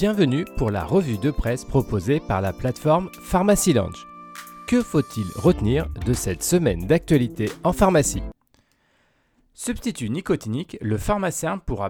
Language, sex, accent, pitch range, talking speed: French, male, French, 110-160 Hz, 125 wpm